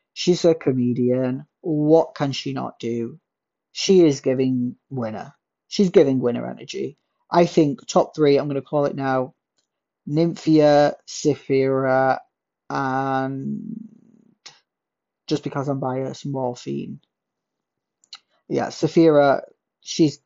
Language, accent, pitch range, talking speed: English, British, 130-160 Hz, 110 wpm